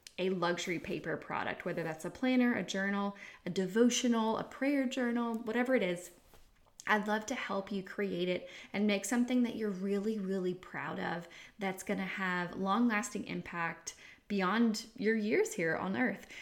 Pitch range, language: 180-240 Hz, English